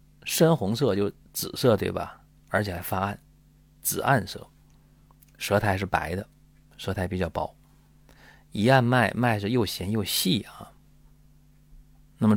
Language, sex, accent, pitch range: Chinese, male, native, 95-145 Hz